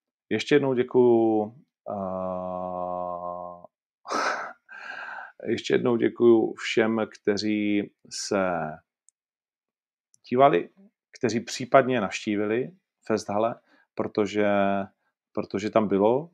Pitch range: 100-125 Hz